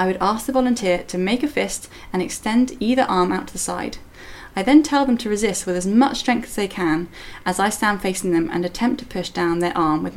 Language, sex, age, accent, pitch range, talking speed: English, female, 10-29, British, 175-240 Hz, 255 wpm